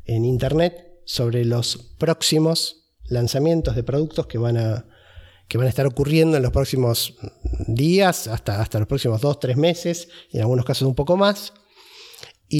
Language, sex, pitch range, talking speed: Spanish, male, 115-165 Hz, 165 wpm